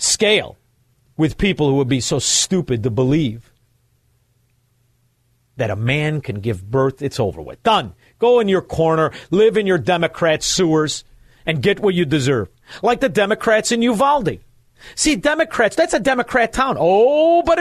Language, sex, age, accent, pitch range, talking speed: English, male, 50-69, American, 120-205 Hz, 160 wpm